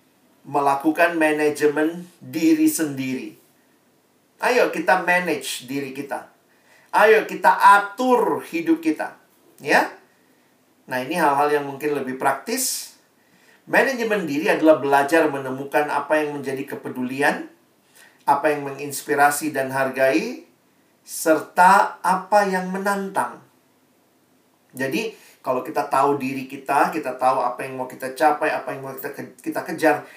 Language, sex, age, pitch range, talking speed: Indonesian, male, 40-59, 140-190 Hz, 120 wpm